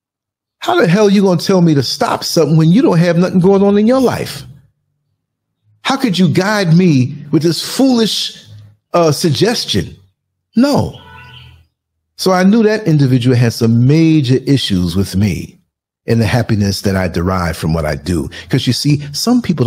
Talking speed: 180 wpm